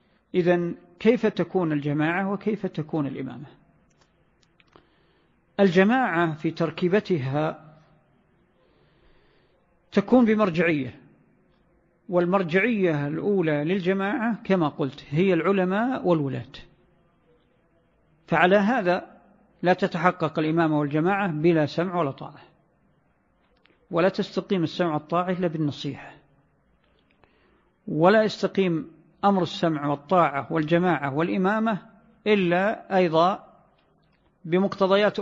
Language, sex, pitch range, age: Arabic, male, 160-190 Hz, 50-69